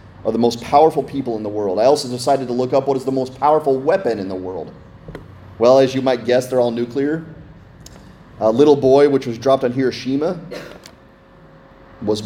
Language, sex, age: English, male, 30-49